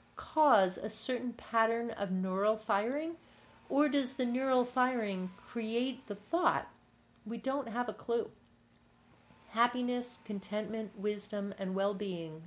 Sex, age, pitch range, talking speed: female, 40-59, 195-235 Hz, 125 wpm